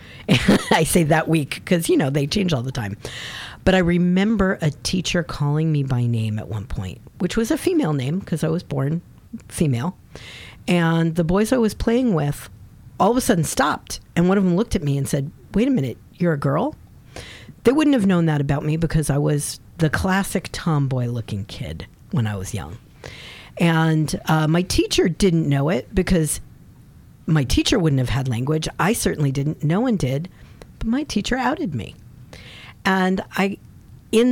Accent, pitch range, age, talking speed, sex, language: American, 140-195 Hz, 50-69, 190 wpm, female, English